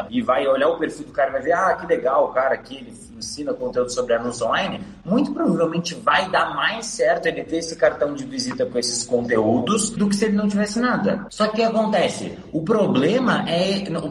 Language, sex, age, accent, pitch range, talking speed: Portuguese, male, 20-39, Brazilian, 165-225 Hz, 215 wpm